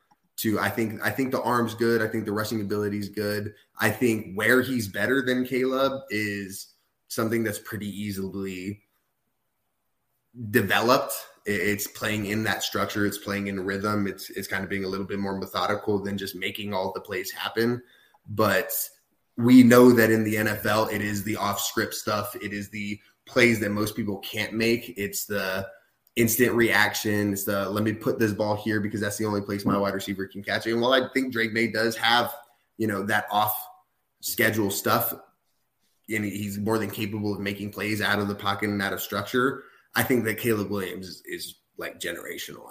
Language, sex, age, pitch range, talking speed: English, male, 20-39, 100-115 Hz, 195 wpm